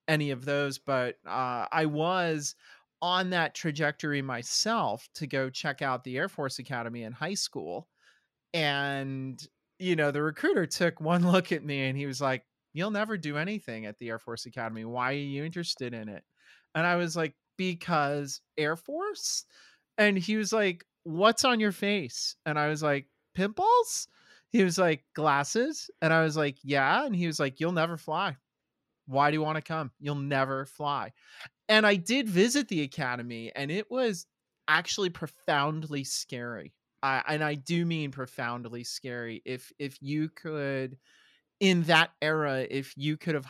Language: English